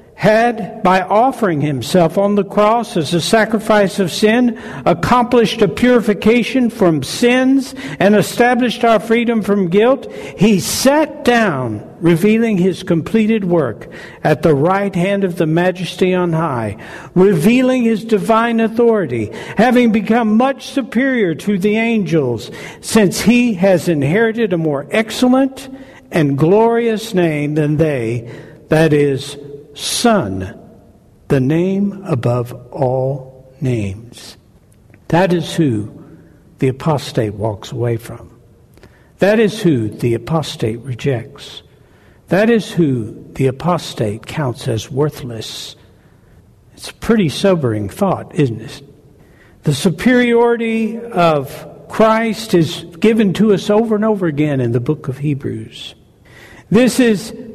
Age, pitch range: 60-79, 135-220 Hz